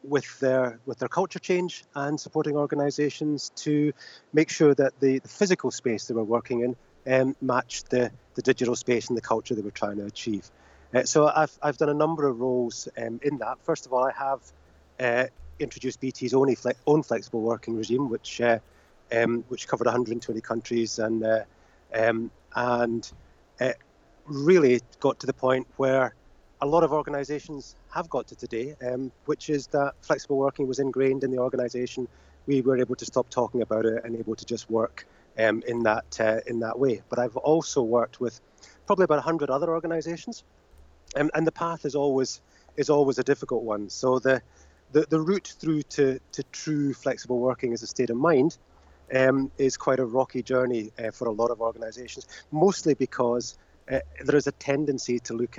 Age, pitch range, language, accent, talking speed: 30-49, 115-145 Hz, English, British, 195 wpm